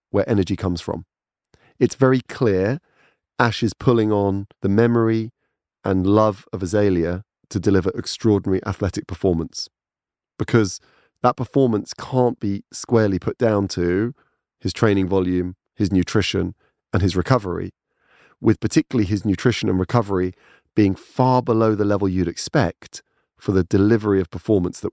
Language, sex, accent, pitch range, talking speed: English, male, British, 95-110 Hz, 140 wpm